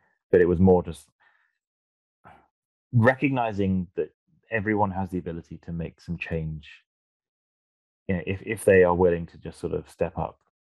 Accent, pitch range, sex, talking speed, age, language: British, 80-95 Hz, male, 160 wpm, 20-39, English